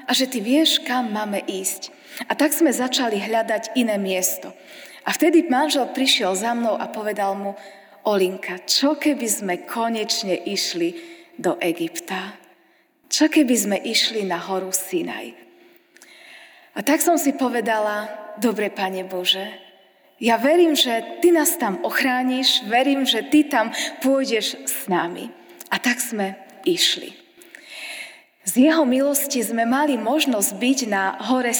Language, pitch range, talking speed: Slovak, 205-300 Hz, 140 wpm